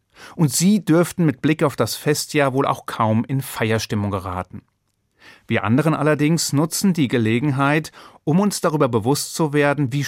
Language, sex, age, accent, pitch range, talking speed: German, male, 40-59, German, 115-150 Hz, 160 wpm